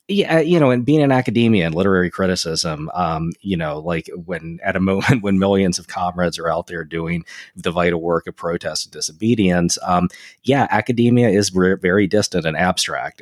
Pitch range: 90-115 Hz